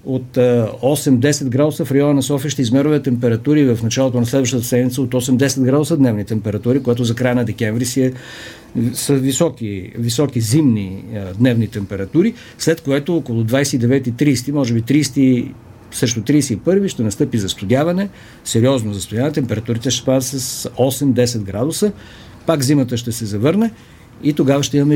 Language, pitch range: Bulgarian, 120-145 Hz